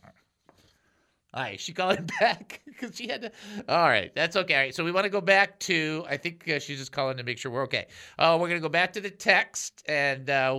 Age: 50-69